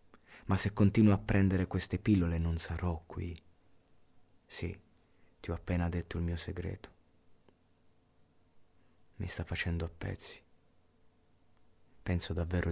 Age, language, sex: 30-49, Italian, male